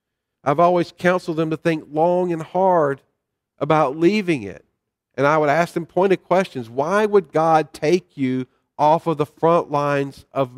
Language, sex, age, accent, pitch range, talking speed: English, male, 50-69, American, 140-175 Hz, 170 wpm